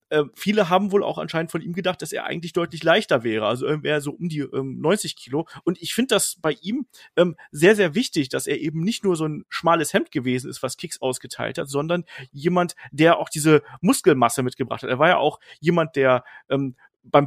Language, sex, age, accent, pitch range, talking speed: German, male, 40-59, German, 145-190 Hz, 220 wpm